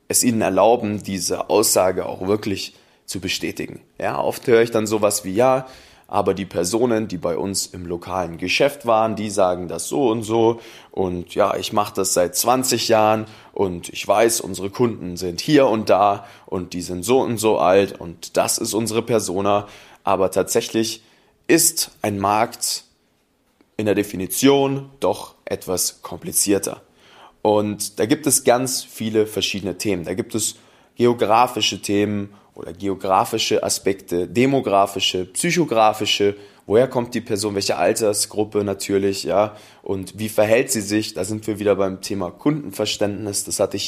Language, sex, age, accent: German, male, 20-39, German